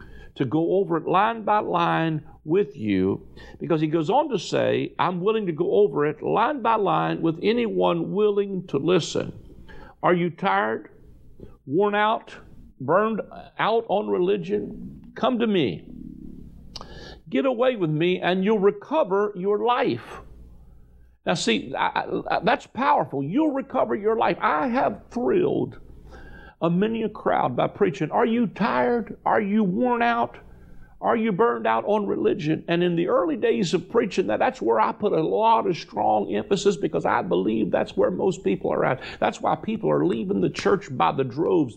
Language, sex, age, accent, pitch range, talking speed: English, male, 50-69, American, 155-215 Hz, 165 wpm